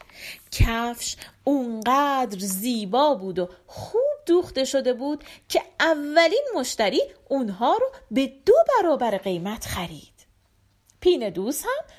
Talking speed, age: 105 wpm, 40-59